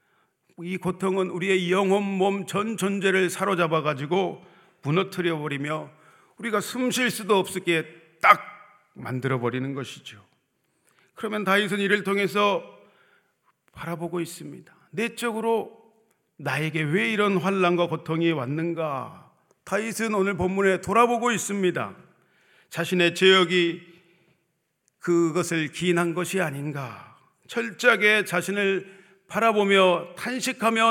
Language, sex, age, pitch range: Korean, male, 40-59, 165-205 Hz